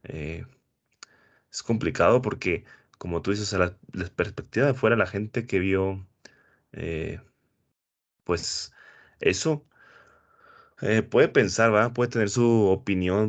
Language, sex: Spanish, male